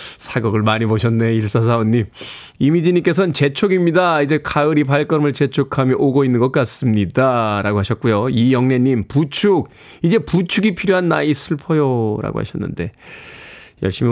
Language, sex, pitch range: Korean, male, 130-210 Hz